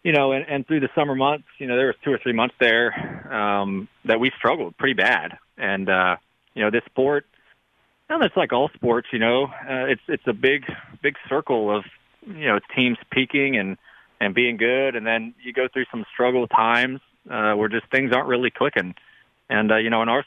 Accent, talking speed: American, 215 wpm